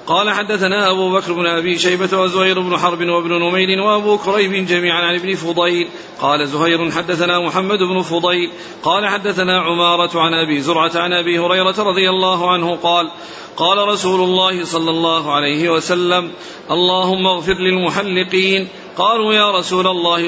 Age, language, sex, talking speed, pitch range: 40-59, Arabic, male, 150 wpm, 170-185 Hz